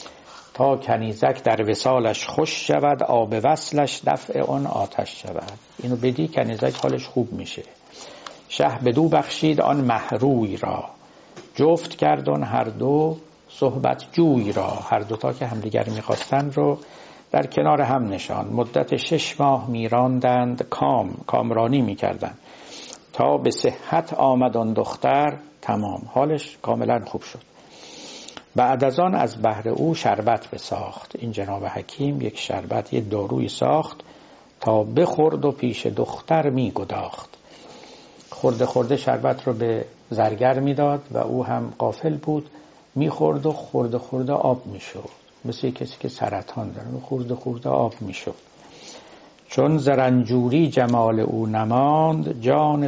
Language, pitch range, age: Persian, 115-145 Hz, 60-79